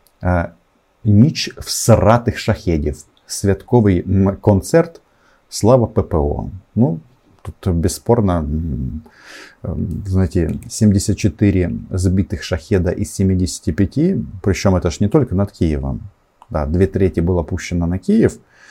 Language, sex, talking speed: Russian, male, 100 wpm